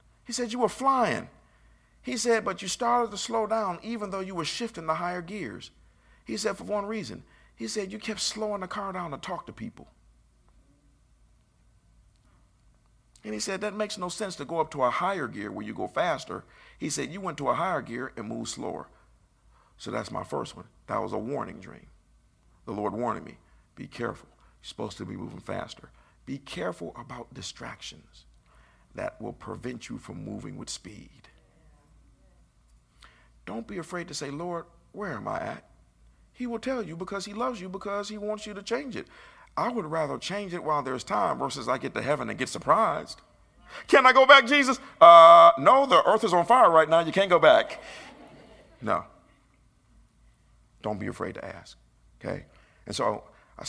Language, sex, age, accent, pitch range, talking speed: English, male, 50-69, American, 160-225 Hz, 190 wpm